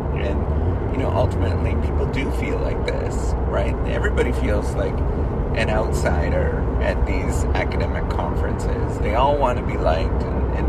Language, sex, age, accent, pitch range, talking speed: English, male, 30-49, American, 75-95 Hz, 150 wpm